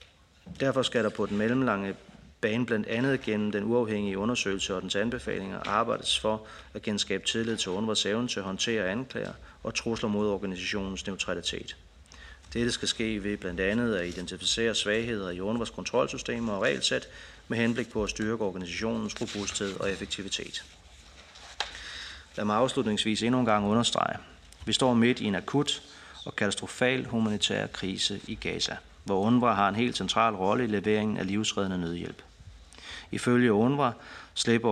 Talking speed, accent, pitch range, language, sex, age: 150 wpm, native, 95-115 Hz, Danish, male, 30-49